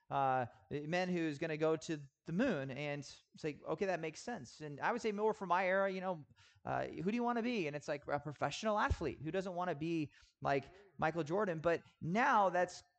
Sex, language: male, English